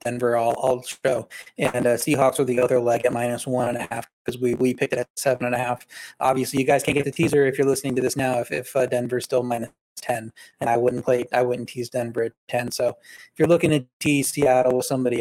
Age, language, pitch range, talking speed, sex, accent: 20-39, English, 125-140 Hz, 260 wpm, male, American